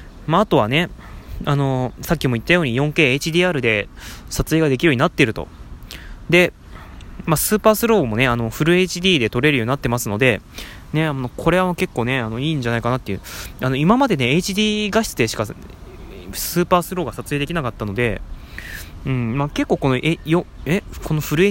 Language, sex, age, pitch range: Japanese, male, 20-39, 110-170 Hz